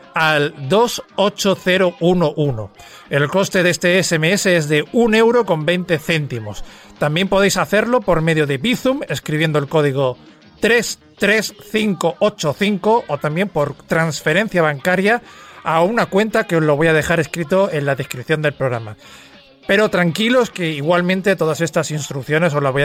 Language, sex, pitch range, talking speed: Spanish, male, 145-195 Hz, 145 wpm